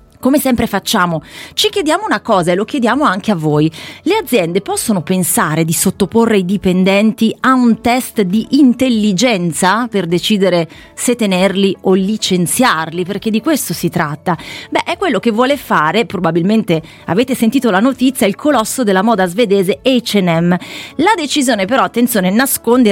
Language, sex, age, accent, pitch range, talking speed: Italian, female, 30-49, native, 180-230 Hz, 155 wpm